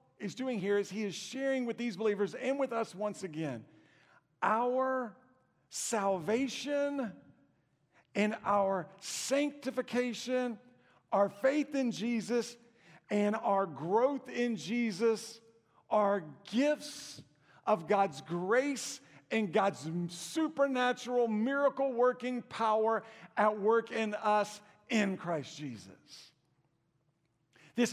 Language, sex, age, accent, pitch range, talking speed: English, male, 50-69, American, 185-245 Hz, 105 wpm